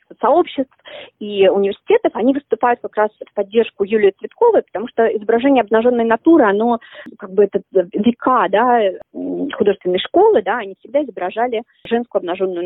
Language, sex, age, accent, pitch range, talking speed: Russian, female, 30-49, native, 195-275 Hz, 140 wpm